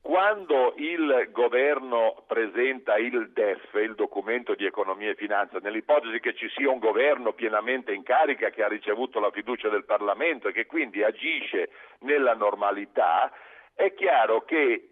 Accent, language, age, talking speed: native, Italian, 50-69, 150 wpm